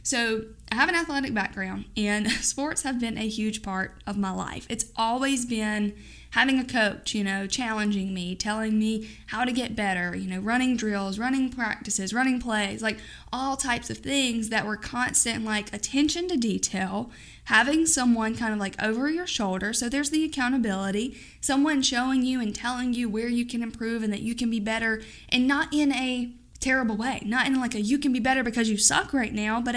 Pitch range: 215-260 Hz